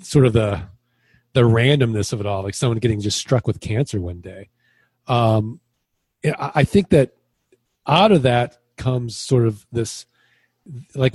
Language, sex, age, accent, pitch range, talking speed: English, male, 40-59, American, 110-130 Hz, 155 wpm